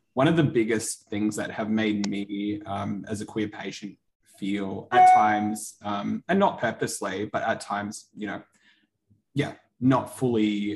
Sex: male